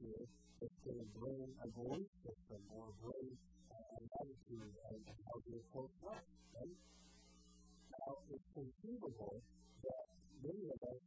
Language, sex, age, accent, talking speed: English, female, 50-69, American, 115 wpm